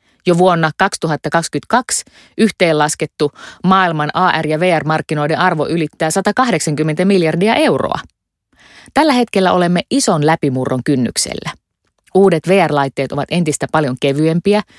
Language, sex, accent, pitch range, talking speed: Finnish, female, native, 140-190 Hz, 100 wpm